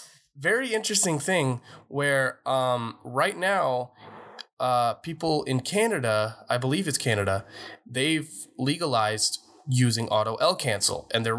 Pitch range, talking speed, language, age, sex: 110-140 Hz, 120 wpm, English, 20-39, male